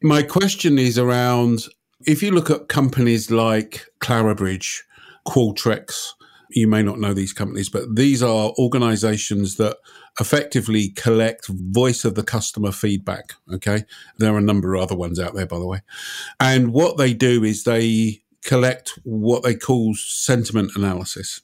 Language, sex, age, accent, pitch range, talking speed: English, male, 50-69, British, 95-115 Hz, 155 wpm